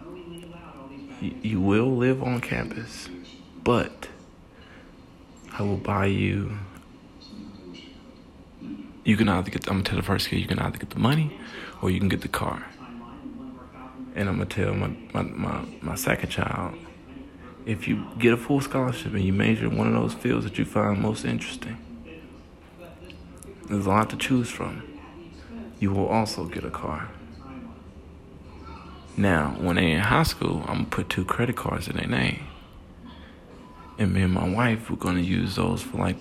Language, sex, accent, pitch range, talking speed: English, male, American, 85-110 Hz, 160 wpm